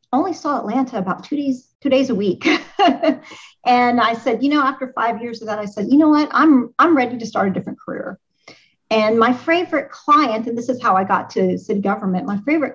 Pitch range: 195-255 Hz